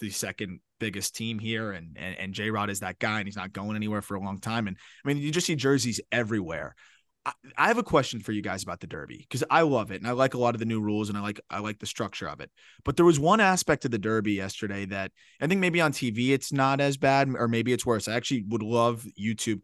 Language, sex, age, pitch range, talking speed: English, male, 20-39, 110-150 Hz, 275 wpm